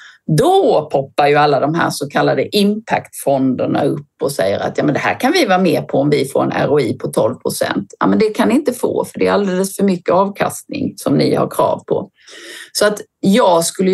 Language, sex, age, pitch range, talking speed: Swedish, female, 40-59, 155-205 Hz, 225 wpm